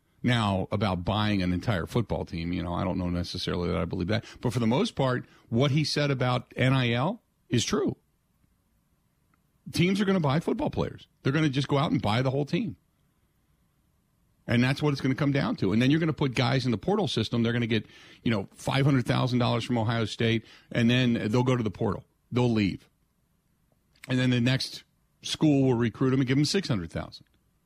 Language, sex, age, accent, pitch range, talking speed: English, male, 50-69, American, 110-140 Hz, 215 wpm